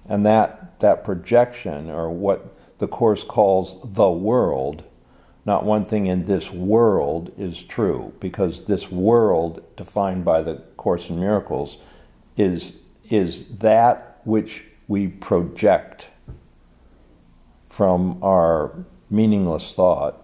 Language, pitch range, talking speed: English, 85-110 Hz, 115 wpm